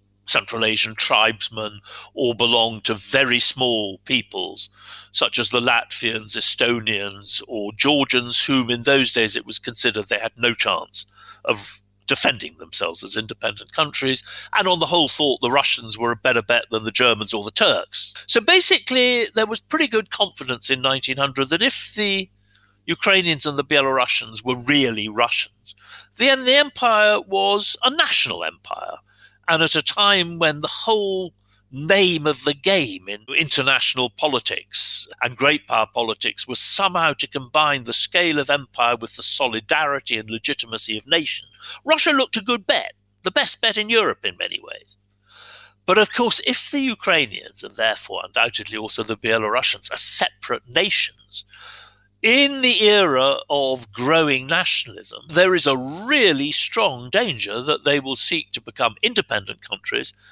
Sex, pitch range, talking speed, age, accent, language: male, 120-195 Hz, 155 wpm, 50-69, British, English